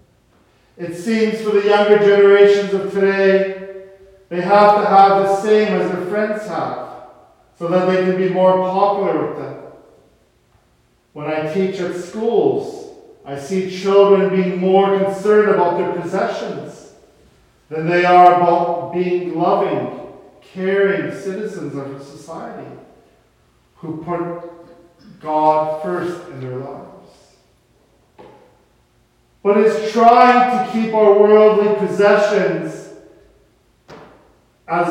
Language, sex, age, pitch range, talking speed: English, male, 50-69, 170-205 Hz, 115 wpm